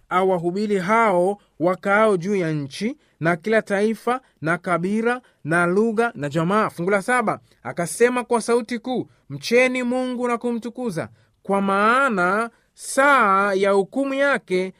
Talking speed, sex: 130 wpm, male